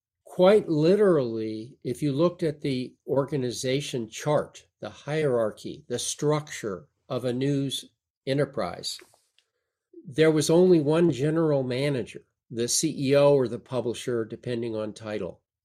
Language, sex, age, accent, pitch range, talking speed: English, male, 50-69, American, 115-150 Hz, 120 wpm